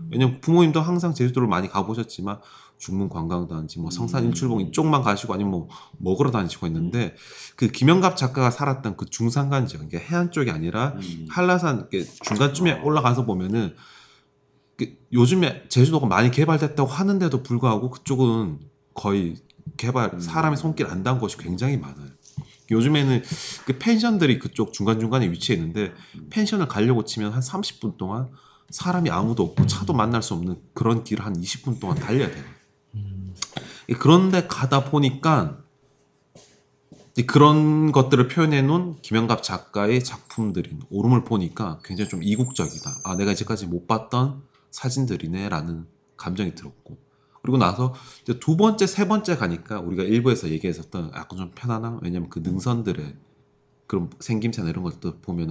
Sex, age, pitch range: male, 30-49, 100-145 Hz